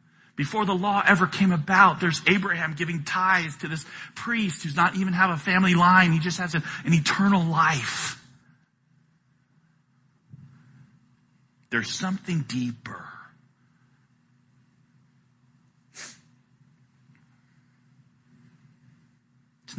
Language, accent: English, American